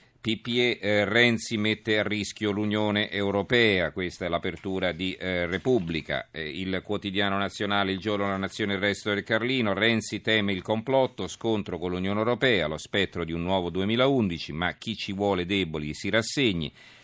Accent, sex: native, male